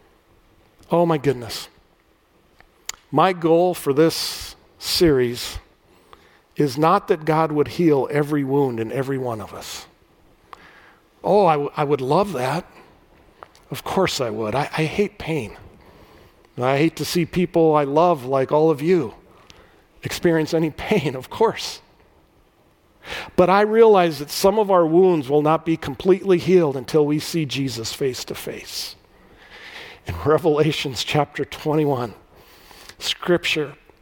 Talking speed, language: 135 wpm, English